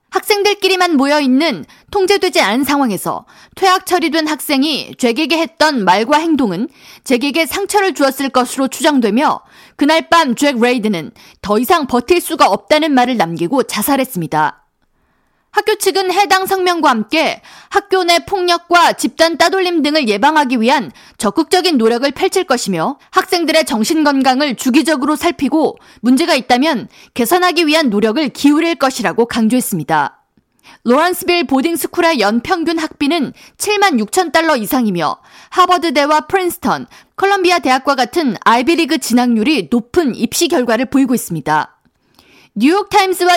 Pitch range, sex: 250-345 Hz, female